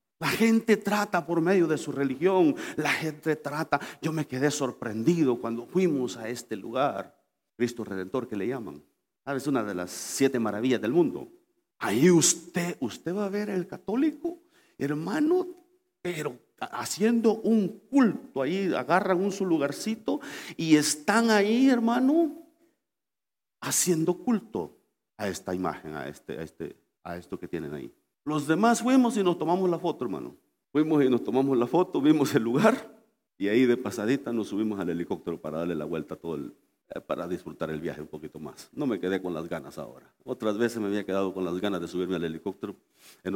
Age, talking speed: 50-69, 180 wpm